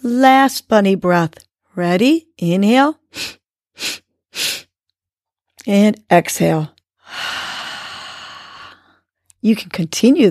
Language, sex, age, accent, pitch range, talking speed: English, female, 50-69, American, 165-210 Hz, 60 wpm